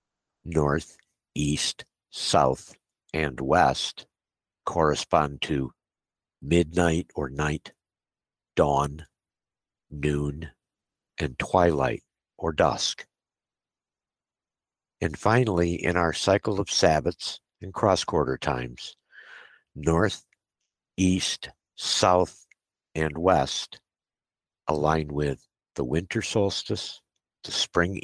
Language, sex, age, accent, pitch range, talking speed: English, male, 60-79, American, 75-90 Hz, 80 wpm